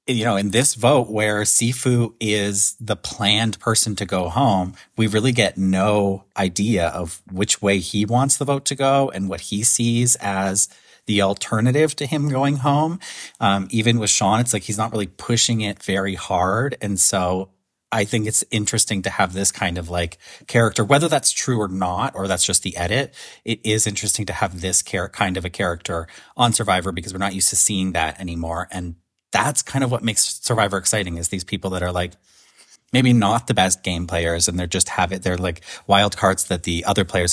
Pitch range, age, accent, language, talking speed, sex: 95-115 Hz, 30-49, American, English, 205 wpm, male